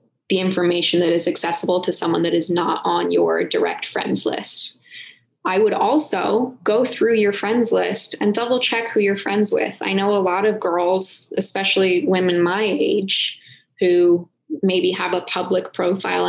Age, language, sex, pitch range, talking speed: 10-29, English, female, 175-220 Hz, 170 wpm